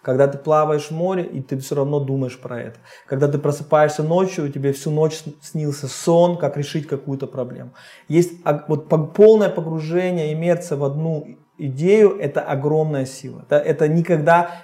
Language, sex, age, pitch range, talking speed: Russian, male, 20-39, 140-175 Hz, 165 wpm